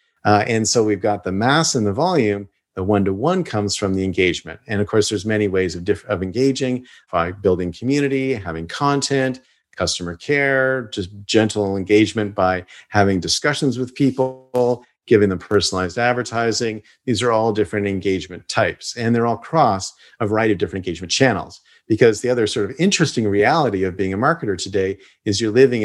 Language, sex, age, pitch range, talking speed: English, male, 40-59, 95-120 Hz, 175 wpm